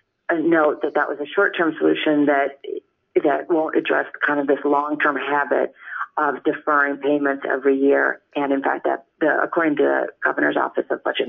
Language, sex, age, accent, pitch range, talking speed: English, female, 40-59, American, 140-175 Hz, 175 wpm